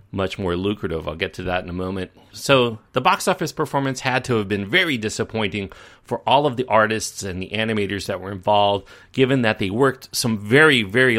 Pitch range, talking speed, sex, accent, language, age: 95-125 Hz, 210 wpm, male, American, English, 40-59